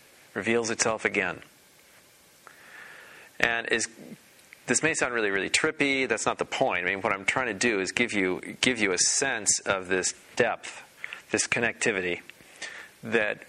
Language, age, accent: English, 40-59, American